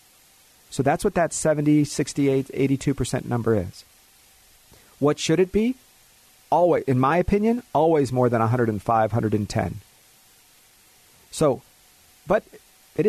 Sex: male